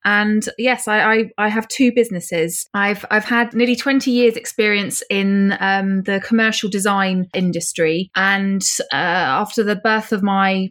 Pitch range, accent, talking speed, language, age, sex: 185-210 Hz, British, 155 wpm, English, 20-39, female